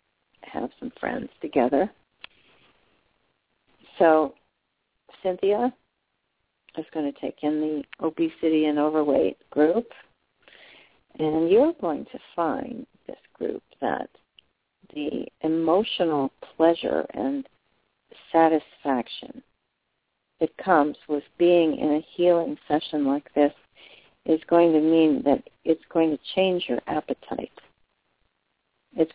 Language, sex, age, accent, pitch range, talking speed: English, female, 50-69, American, 155-185 Hz, 105 wpm